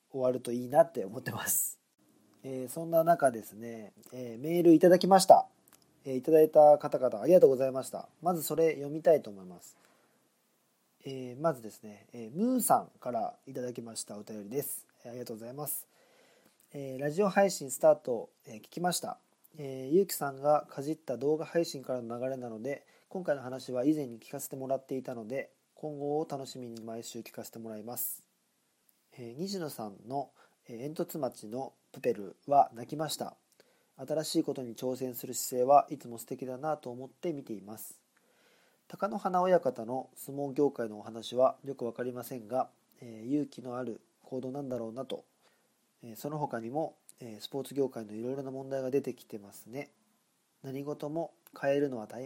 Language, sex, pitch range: Japanese, male, 120-150 Hz